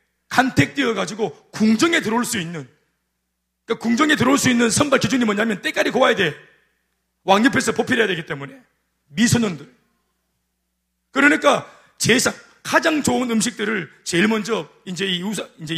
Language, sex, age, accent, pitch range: Korean, male, 40-59, native, 180-265 Hz